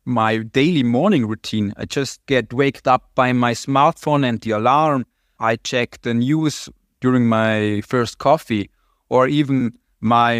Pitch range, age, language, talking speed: 110-130 Hz, 30-49, English, 150 wpm